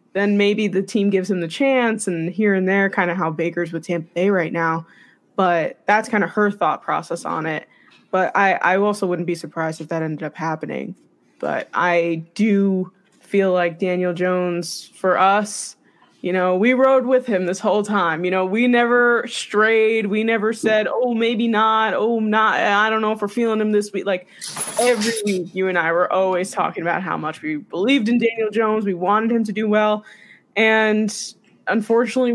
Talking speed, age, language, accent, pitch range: 200 wpm, 20-39, English, American, 180-220 Hz